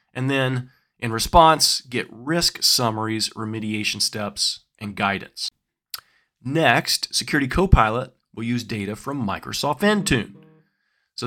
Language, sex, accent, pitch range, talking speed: English, male, American, 110-140 Hz, 110 wpm